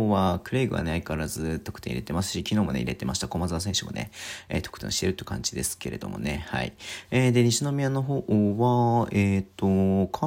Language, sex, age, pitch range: Japanese, male, 40-59, 90-115 Hz